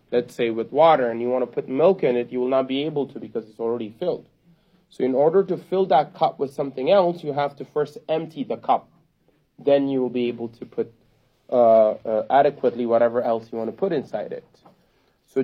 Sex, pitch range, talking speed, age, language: male, 125-155 Hz, 225 wpm, 30-49, English